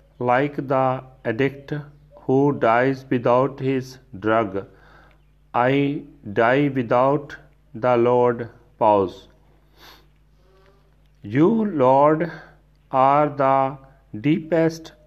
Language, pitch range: Punjabi, 125-150 Hz